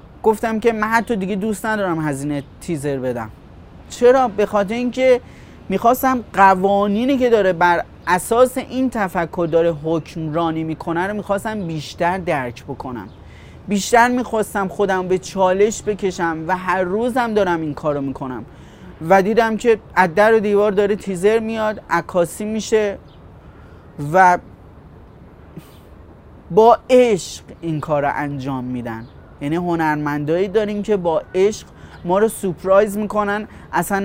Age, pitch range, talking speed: 30-49, 160-215 Hz, 135 wpm